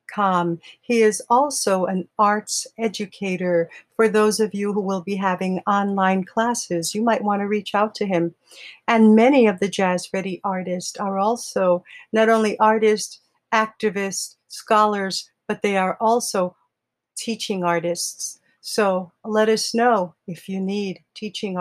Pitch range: 185-225 Hz